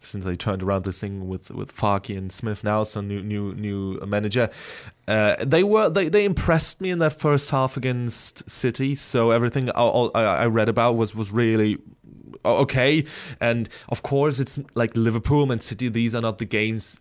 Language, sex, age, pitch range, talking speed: English, male, 20-39, 110-135 Hz, 195 wpm